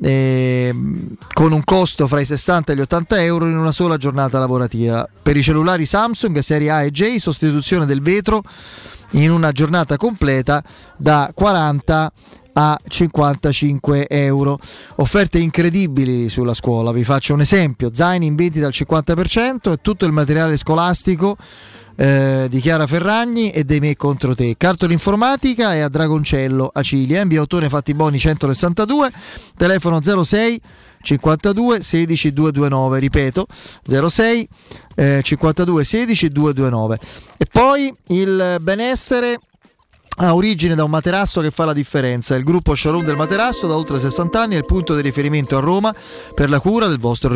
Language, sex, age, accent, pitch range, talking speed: Italian, male, 20-39, native, 145-185 Hz, 150 wpm